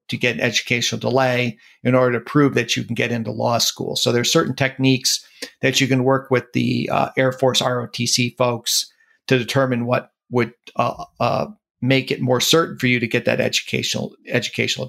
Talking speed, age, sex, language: 195 wpm, 50-69, male, English